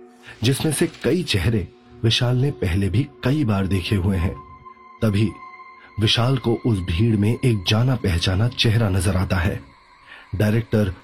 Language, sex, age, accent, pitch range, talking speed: Hindi, male, 40-59, native, 105-120 Hz, 145 wpm